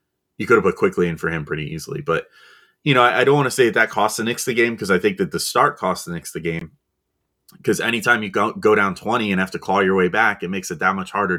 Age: 30-49